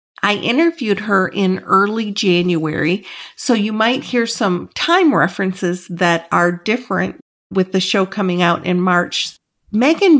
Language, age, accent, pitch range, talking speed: English, 50-69, American, 180-240 Hz, 140 wpm